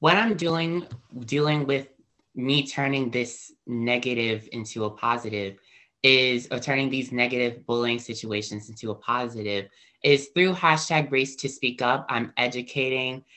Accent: American